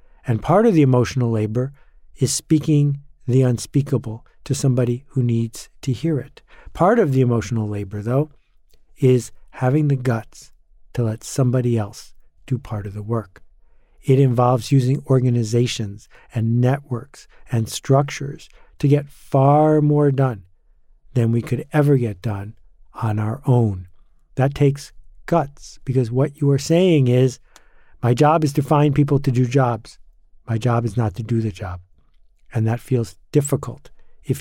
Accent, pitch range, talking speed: American, 115-145 Hz, 155 wpm